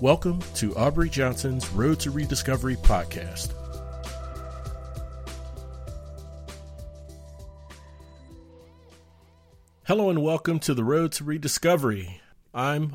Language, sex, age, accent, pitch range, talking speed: English, male, 40-59, American, 85-125 Hz, 80 wpm